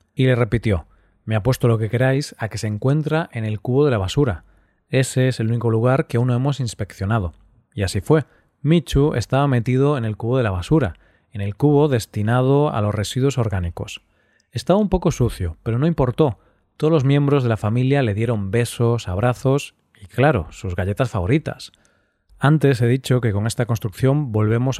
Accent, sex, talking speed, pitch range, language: Spanish, male, 190 wpm, 105-140 Hz, Spanish